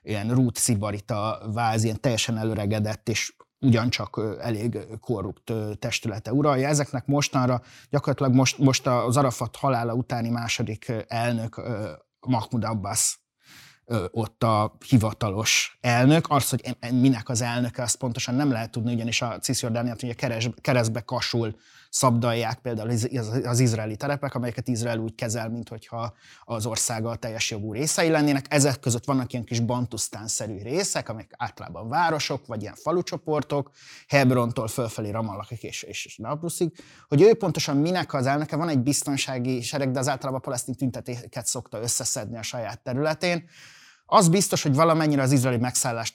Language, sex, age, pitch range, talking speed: Hungarian, male, 20-39, 115-135 Hz, 145 wpm